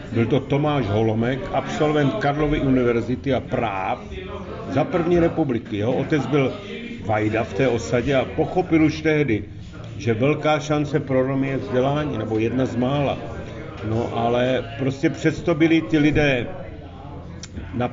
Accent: native